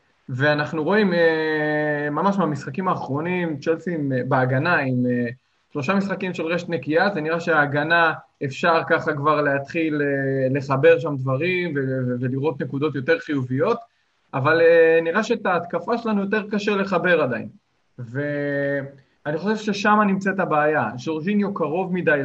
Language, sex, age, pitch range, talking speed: Hebrew, male, 20-39, 140-175 Hz, 120 wpm